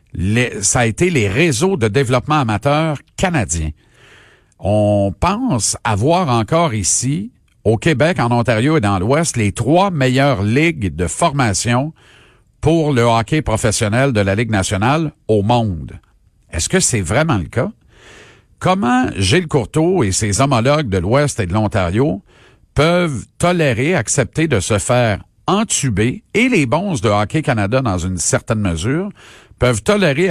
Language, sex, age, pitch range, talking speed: French, male, 50-69, 110-155 Hz, 145 wpm